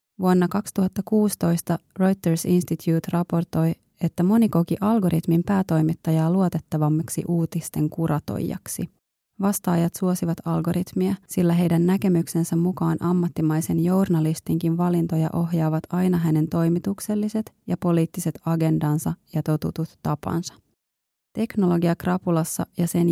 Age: 30-49